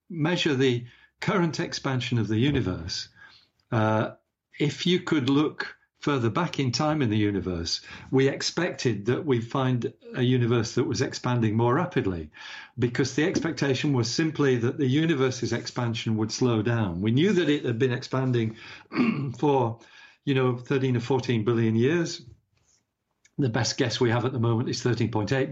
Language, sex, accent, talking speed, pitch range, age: English, male, British, 160 wpm, 115-140 Hz, 50-69